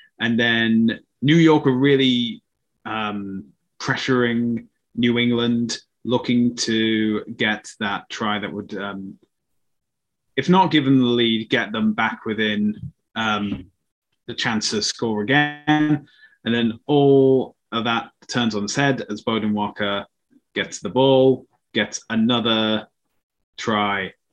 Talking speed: 125 wpm